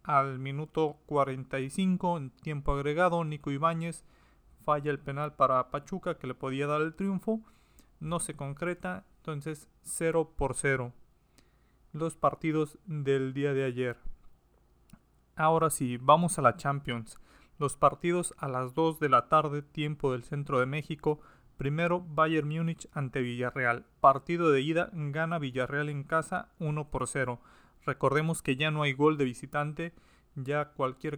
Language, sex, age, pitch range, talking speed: Spanish, male, 30-49, 135-160 Hz, 145 wpm